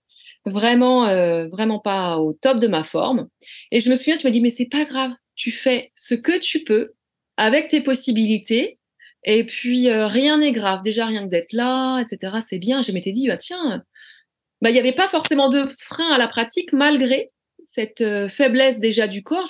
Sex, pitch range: female, 205-265 Hz